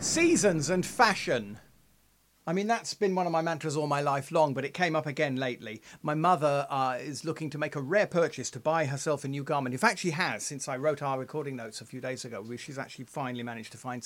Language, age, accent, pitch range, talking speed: English, 40-59, British, 135-205 Hz, 245 wpm